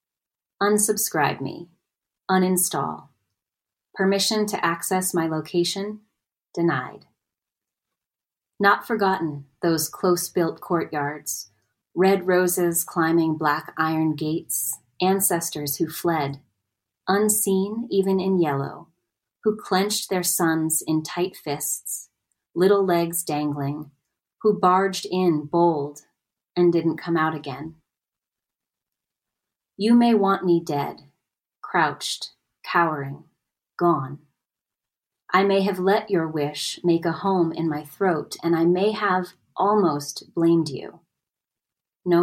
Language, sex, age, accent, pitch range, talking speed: English, female, 30-49, American, 155-190 Hz, 105 wpm